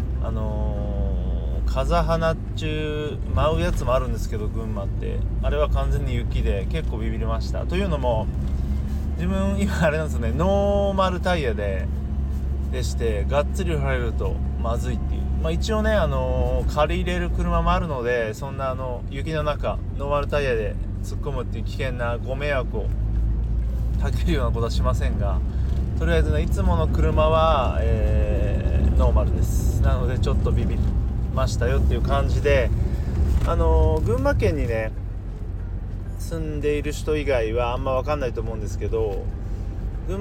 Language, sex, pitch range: Japanese, male, 70-105 Hz